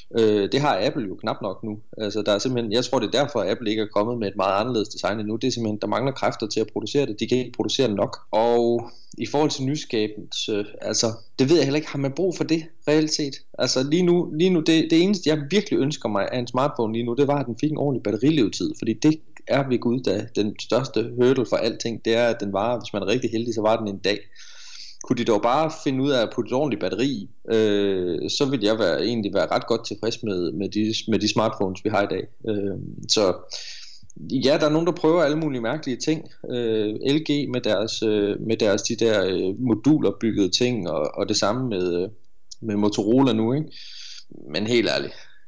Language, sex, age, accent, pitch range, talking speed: Danish, male, 30-49, native, 110-145 Hz, 235 wpm